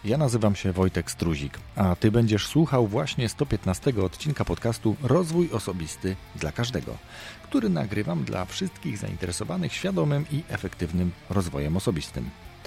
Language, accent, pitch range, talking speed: Polish, native, 85-115 Hz, 130 wpm